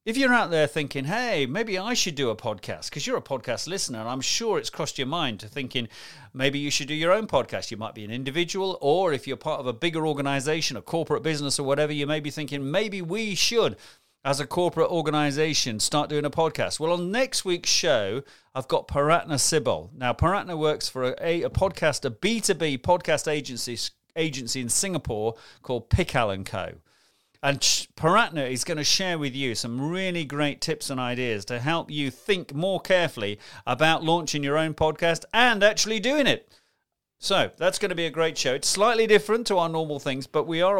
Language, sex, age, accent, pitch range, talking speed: English, male, 40-59, British, 140-190 Hz, 205 wpm